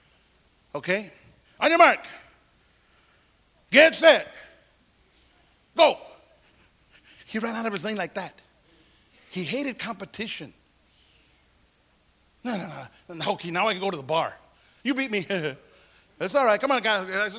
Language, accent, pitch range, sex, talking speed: English, American, 180-275 Hz, male, 135 wpm